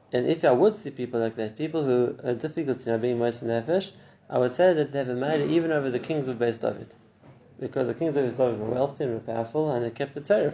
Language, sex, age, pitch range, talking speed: English, male, 30-49, 115-145 Hz, 270 wpm